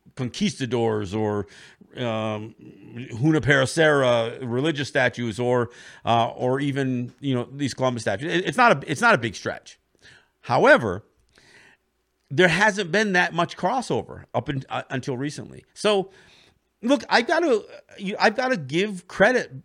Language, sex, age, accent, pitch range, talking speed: English, male, 50-69, American, 130-180 Hz, 135 wpm